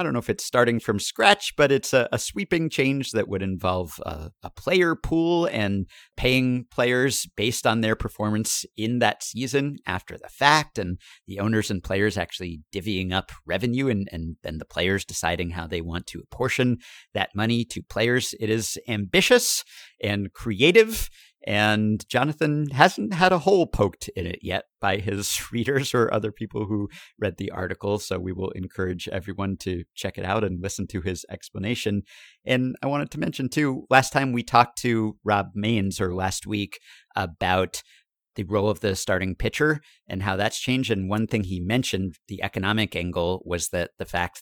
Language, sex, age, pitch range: English, male, 50-69, 90-115 Hz